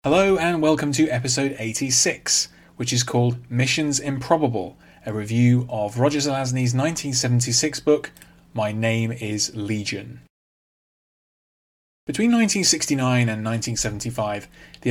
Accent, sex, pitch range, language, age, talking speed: British, male, 105-140 Hz, English, 30-49, 110 wpm